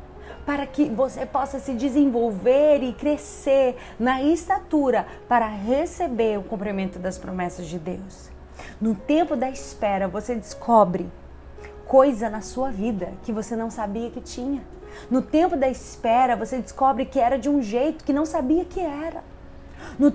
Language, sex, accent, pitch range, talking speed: Portuguese, female, Brazilian, 265-330 Hz, 150 wpm